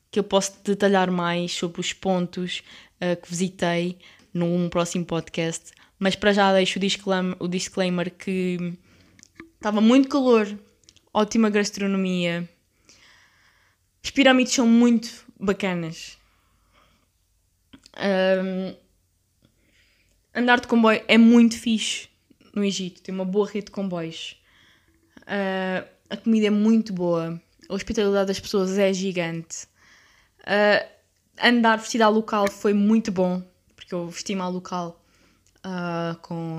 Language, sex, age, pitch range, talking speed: Portuguese, female, 20-39, 175-225 Hz, 115 wpm